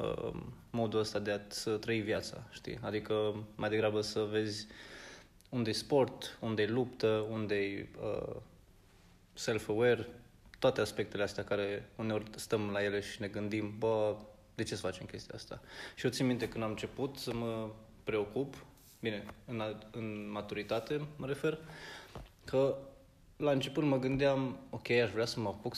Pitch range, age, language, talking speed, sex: 105-120 Hz, 20-39, Romanian, 150 wpm, male